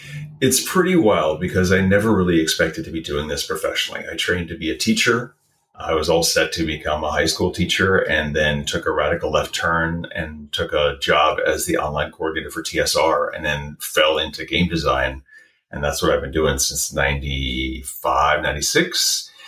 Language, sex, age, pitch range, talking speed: English, male, 40-59, 75-100 Hz, 190 wpm